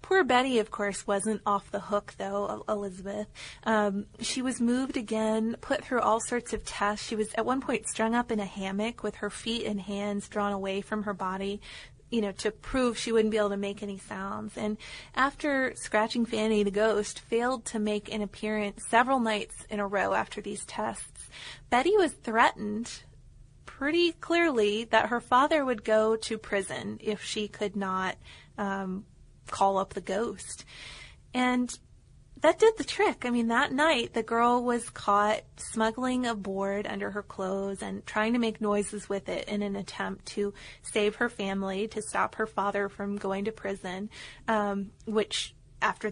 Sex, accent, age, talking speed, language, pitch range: female, American, 30-49, 180 wpm, English, 200-240 Hz